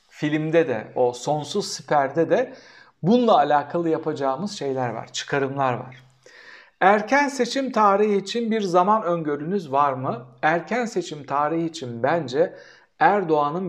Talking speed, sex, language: 125 wpm, male, Turkish